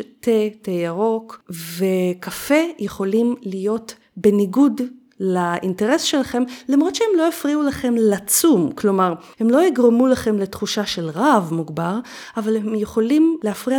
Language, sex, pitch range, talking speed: Hebrew, female, 185-260 Hz, 120 wpm